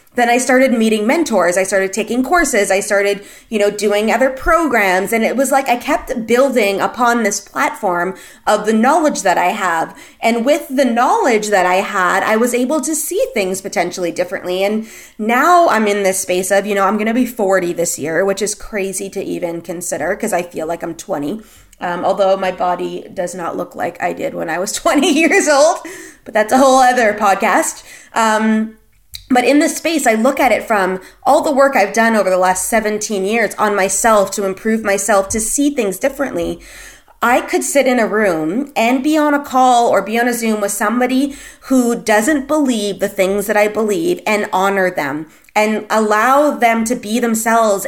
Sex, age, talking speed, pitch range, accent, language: female, 20-39, 200 wpm, 195-260 Hz, American, English